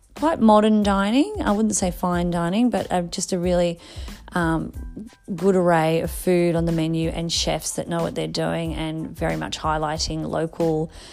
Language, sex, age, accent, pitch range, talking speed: English, female, 30-49, Australian, 160-185 Hz, 175 wpm